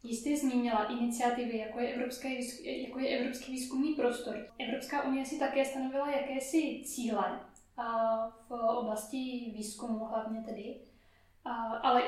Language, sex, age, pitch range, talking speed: Czech, female, 10-29, 230-260 Hz, 125 wpm